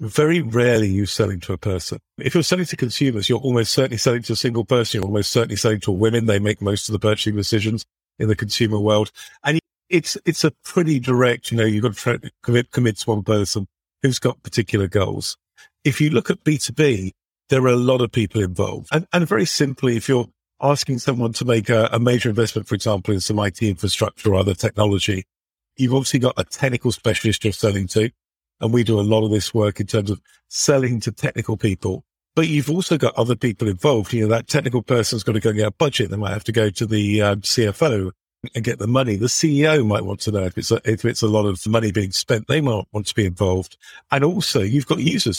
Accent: British